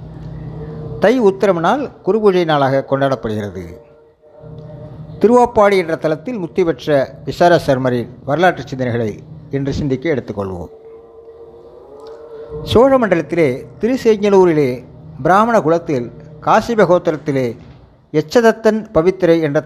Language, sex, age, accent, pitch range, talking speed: Tamil, male, 60-79, native, 150-190 Hz, 75 wpm